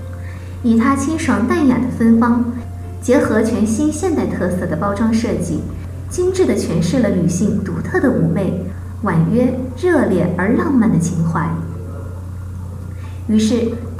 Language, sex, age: Chinese, female, 20-39